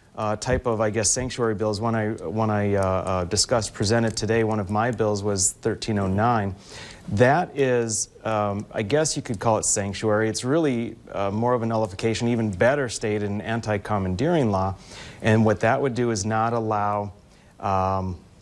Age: 30-49